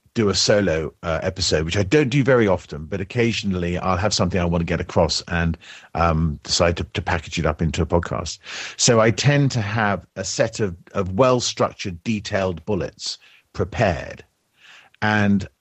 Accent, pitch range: British, 90-110 Hz